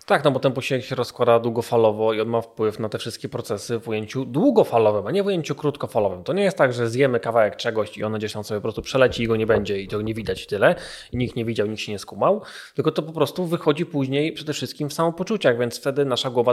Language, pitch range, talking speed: Polish, 115-140 Hz, 260 wpm